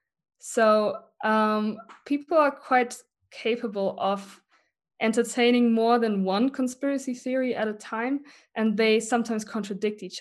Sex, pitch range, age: female, 195-240 Hz, 20-39